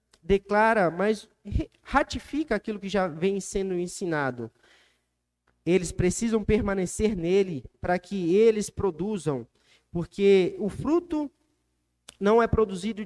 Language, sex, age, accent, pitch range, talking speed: Portuguese, male, 20-39, Brazilian, 170-220 Hz, 105 wpm